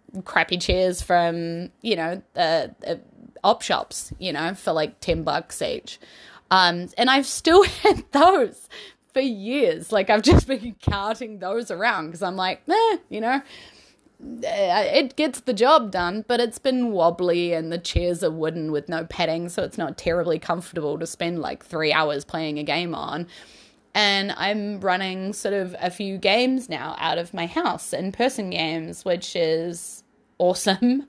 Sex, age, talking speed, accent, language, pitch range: female, 20-39, 170 wpm, Australian, English, 165-215 Hz